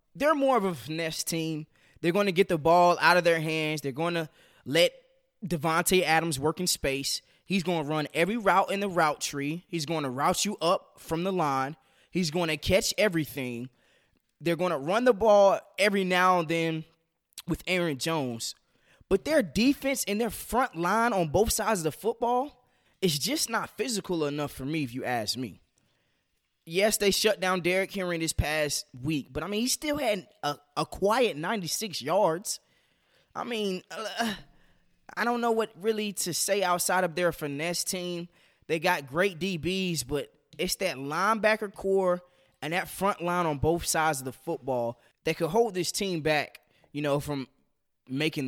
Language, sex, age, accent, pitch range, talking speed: English, male, 20-39, American, 150-205 Hz, 185 wpm